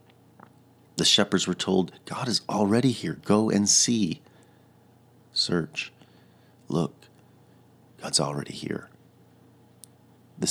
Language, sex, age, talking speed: English, male, 40-59, 95 wpm